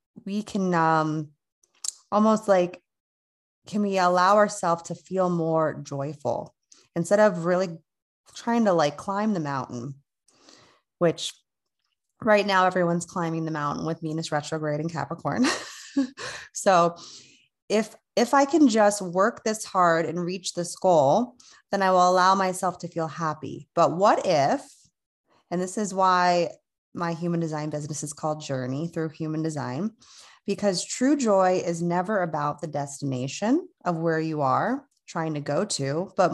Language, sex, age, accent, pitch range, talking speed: English, female, 30-49, American, 155-195 Hz, 145 wpm